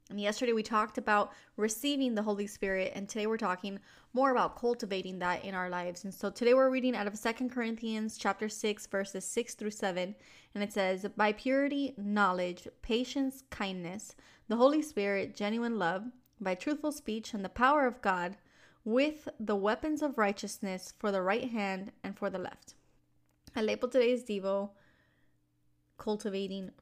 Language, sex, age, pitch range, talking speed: English, female, 20-39, 190-225 Hz, 165 wpm